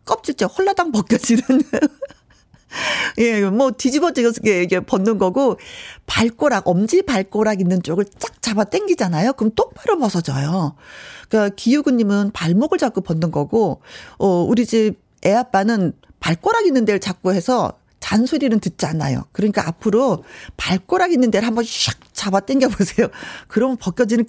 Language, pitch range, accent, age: Korean, 185-255 Hz, native, 40-59